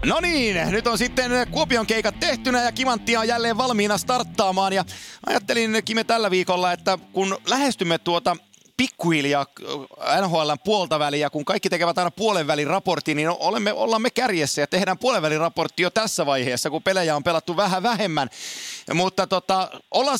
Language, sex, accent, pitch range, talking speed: Finnish, male, native, 155-215 Hz, 155 wpm